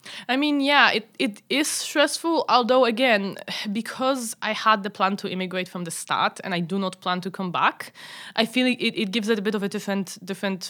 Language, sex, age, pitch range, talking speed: English, female, 20-39, 180-225 Hz, 220 wpm